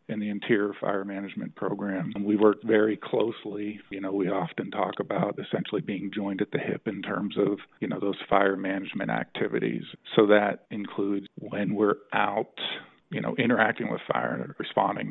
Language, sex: English, male